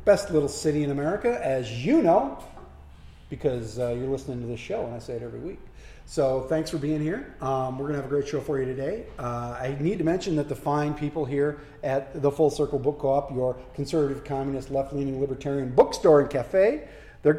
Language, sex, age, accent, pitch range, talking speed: English, male, 40-59, American, 130-155 Hz, 215 wpm